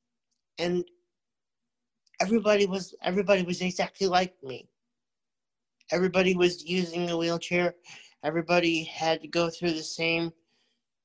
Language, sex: English, male